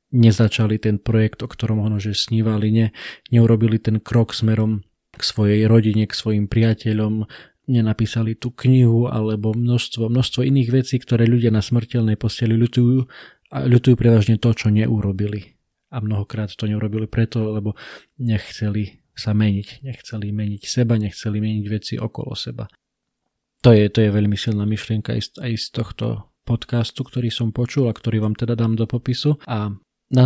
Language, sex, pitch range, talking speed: Slovak, male, 110-120 Hz, 160 wpm